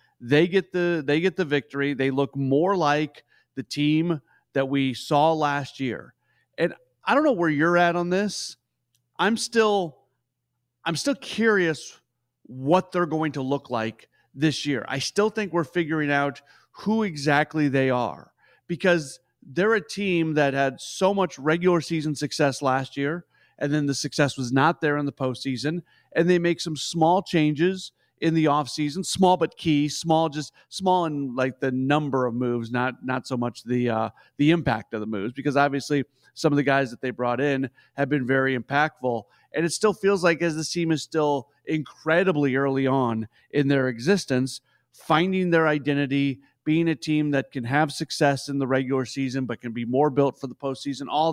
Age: 40-59